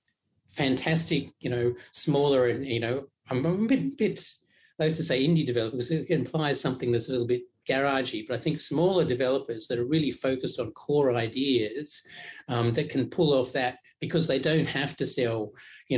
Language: English